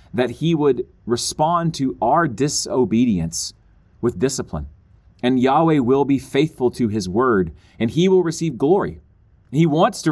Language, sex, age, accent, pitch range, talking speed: English, male, 30-49, American, 100-150 Hz, 150 wpm